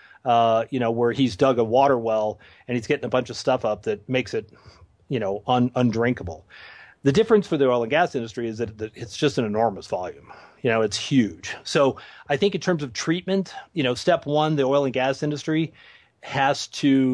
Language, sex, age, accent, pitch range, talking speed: English, male, 30-49, American, 115-140 Hz, 215 wpm